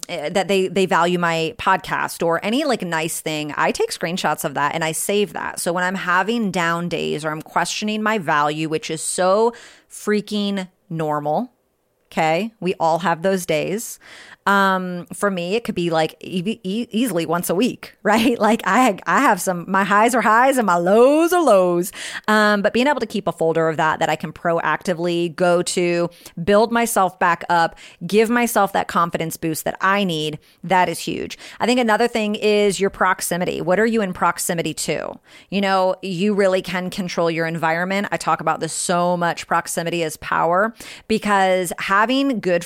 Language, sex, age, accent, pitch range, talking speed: English, female, 30-49, American, 165-205 Hz, 190 wpm